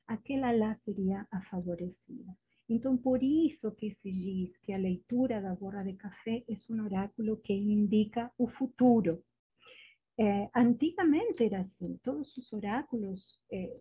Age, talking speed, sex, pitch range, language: 50-69, 145 wpm, female, 185-245 Hz, Portuguese